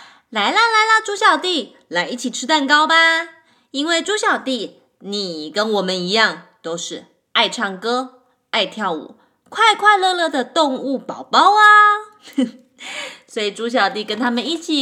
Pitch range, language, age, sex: 230-335 Hz, Chinese, 20-39, female